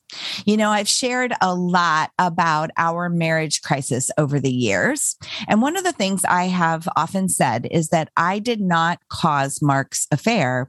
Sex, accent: female, American